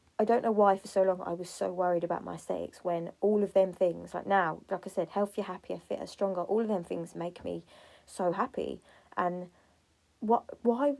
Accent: British